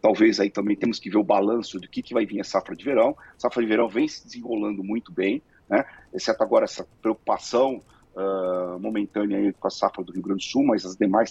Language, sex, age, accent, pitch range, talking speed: Portuguese, male, 40-59, Brazilian, 95-110 Hz, 240 wpm